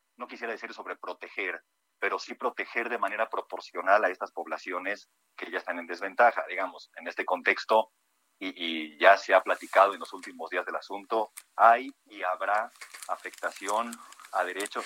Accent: Mexican